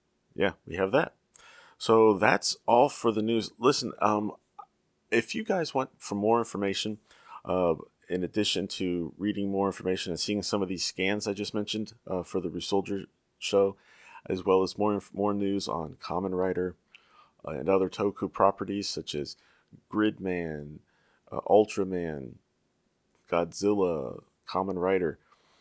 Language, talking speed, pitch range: English, 145 wpm, 90-105 Hz